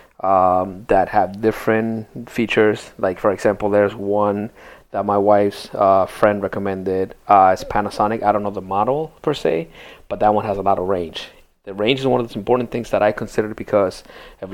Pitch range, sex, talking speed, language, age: 100-110 Hz, male, 195 wpm, English, 30-49